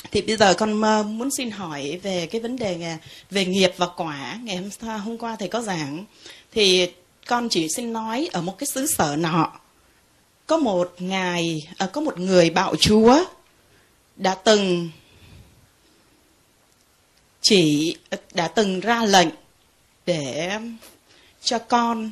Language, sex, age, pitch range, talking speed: Vietnamese, female, 20-39, 175-235 Hz, 145 wpm